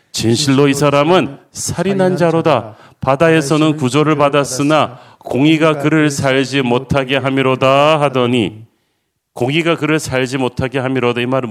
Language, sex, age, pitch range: Korean, male, 40-59, 125-155 Hz